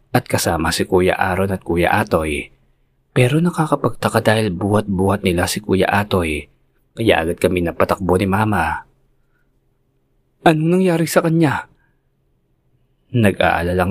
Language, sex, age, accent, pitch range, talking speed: Filipino, male, 20-39, native, 80-110 Hz, 115 wpm